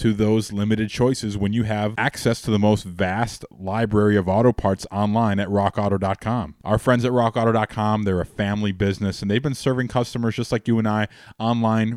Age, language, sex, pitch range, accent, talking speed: 20-39, English, male, 100-115 Hz, American, 190 wpm